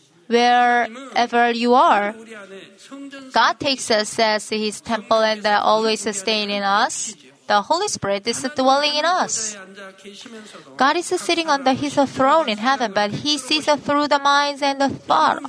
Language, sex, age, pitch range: Korean, female, 30-49, 215-270 Hz